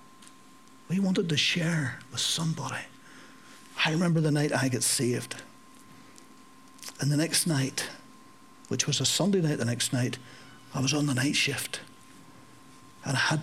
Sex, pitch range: male, 130-175 Hz